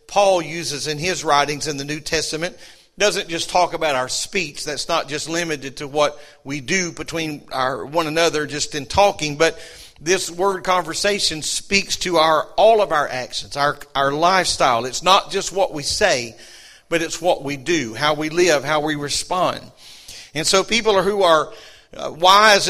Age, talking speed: 50-69, 175 wpm